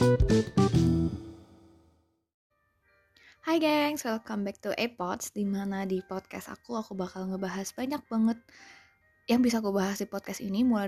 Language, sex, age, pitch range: Indonesian, female, 20-39, 185-220 Hz